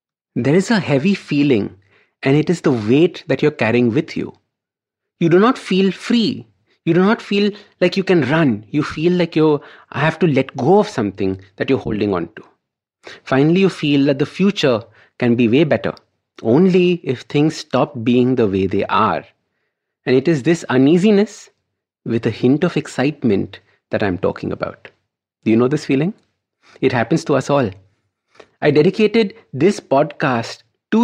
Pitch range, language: 125-180 Hz, English